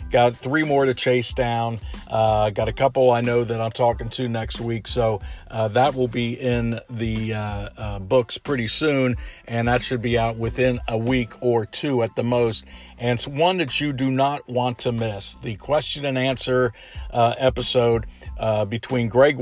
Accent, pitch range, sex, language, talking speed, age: American, 110-130 Hz, male, English, 190 wpm, 50-69